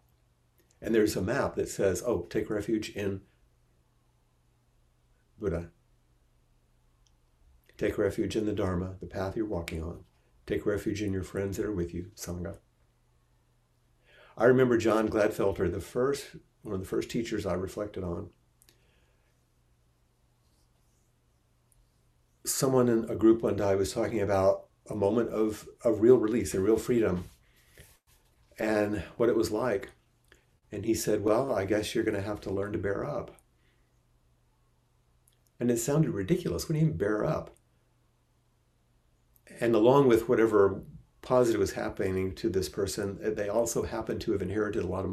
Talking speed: 145 wpm